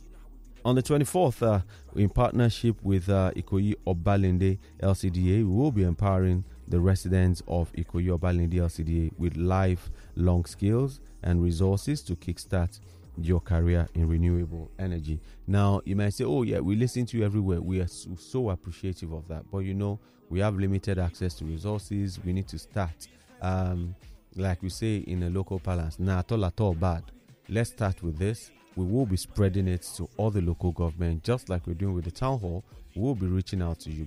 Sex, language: male, English